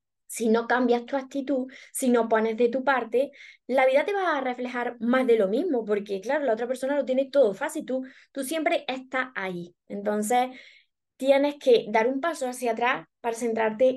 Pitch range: 225-265 Hz